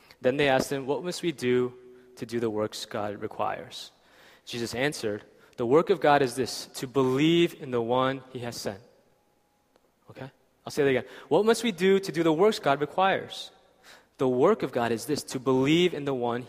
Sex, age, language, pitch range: male, 20-39, Korean, 120-155 Hz